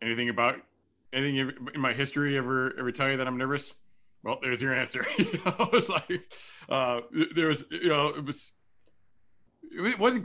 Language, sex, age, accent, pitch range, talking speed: English, male, 40-59, American, 110-145 Hz, 180 wpm